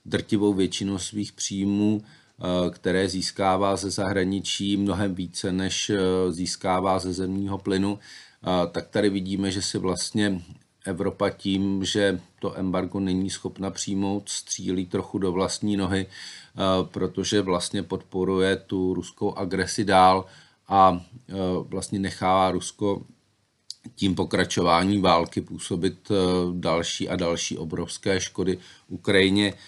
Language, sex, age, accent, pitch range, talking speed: Czech, male, 40-59, native, 90-100 Hz, 110 wpm